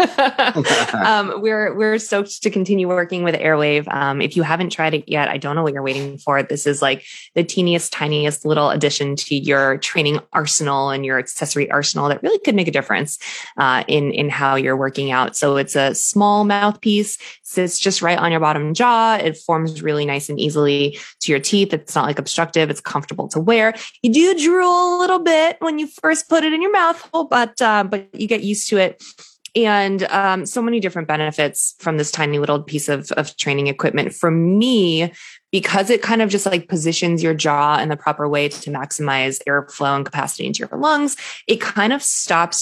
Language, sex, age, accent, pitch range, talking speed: English, female, 20-39, American, 145-210 Hz, 205 wpm